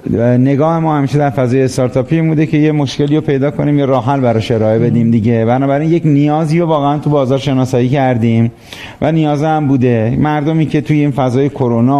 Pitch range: 125-160 Hz